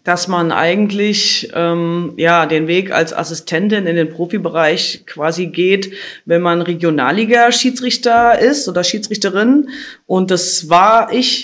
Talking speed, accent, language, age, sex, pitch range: 125 wpm, German, German, 20-39, female, 175-220 Hz